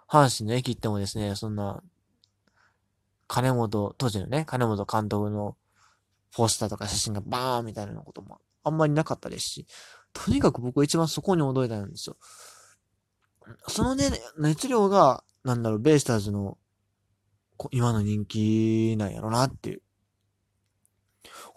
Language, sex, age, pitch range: Japanese, male, 20-39, 100-135 Hz